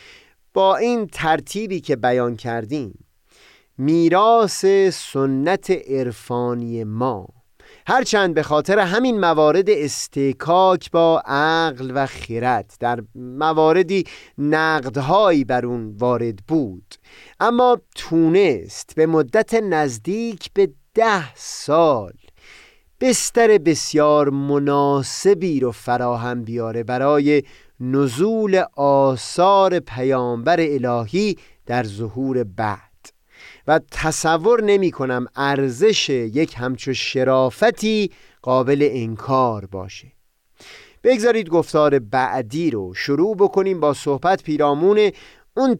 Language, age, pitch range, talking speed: Persian, 30-49, 125-190 Hz, 90 wpm